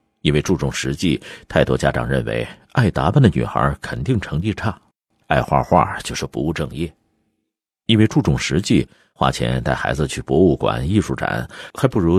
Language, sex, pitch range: Chinese, male, 70-100 Hz